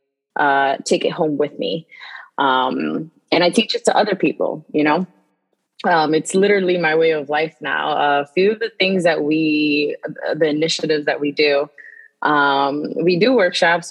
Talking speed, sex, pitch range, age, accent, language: 175 wpm, female, 150-180 Hz, 20-39, American, English